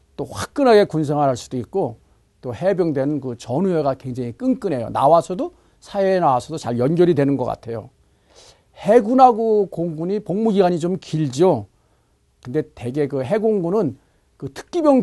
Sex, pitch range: male, 130-200 Hz